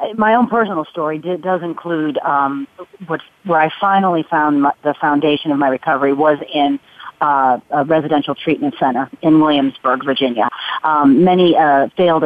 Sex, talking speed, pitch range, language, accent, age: female, 160 wpm, 140-170 Hz, English, American, 40-59